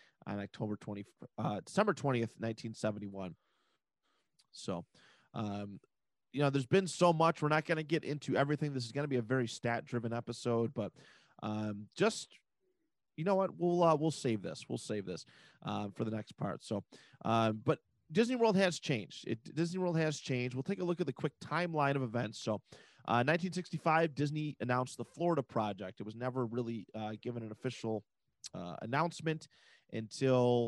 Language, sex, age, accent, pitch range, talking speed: English, male, 30-49, American, 115-155 Hz, 190 wpm